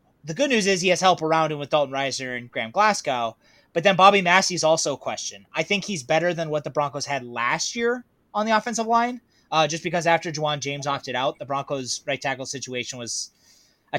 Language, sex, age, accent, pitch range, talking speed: English, male, 20-39, American, 145-190 Hz, 225 wpm